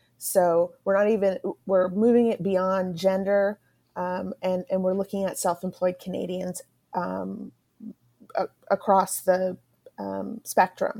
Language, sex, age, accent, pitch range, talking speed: English, female, 30-49, American, 185-210 Hz, 125 wpm